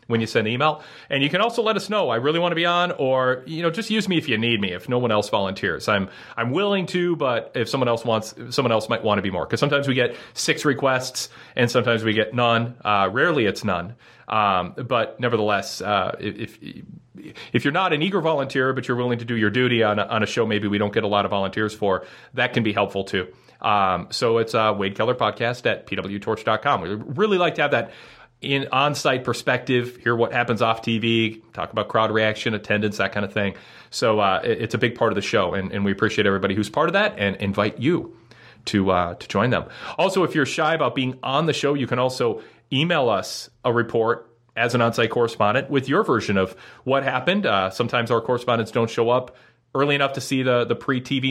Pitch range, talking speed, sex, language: 110-135 Hz, 245 wpm, male, English